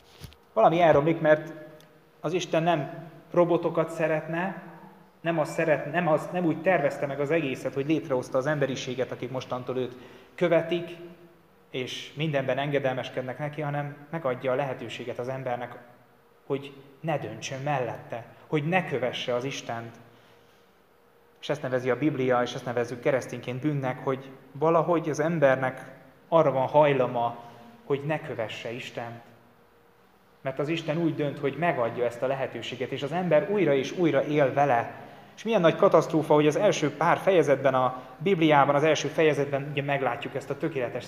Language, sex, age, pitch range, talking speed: Hungarian, male, 20-39, 130-160 Hz, 150 wpm